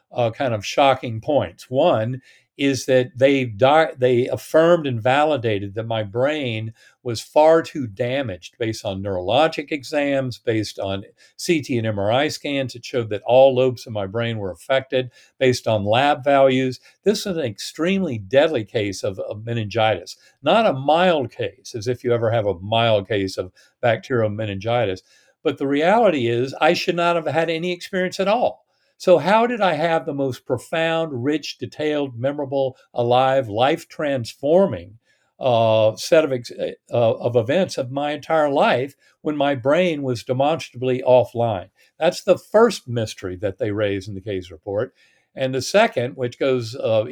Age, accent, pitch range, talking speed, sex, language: 50-69, American, 115-155 Hz, 160 wpm, male, English